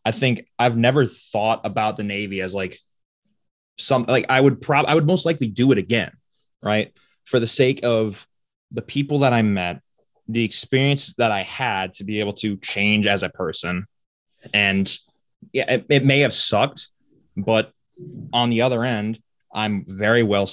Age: 20-39